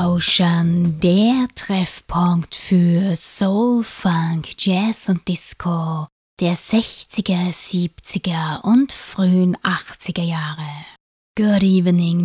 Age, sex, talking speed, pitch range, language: 20-39, female, 90 wpm, 170-195 Hz, German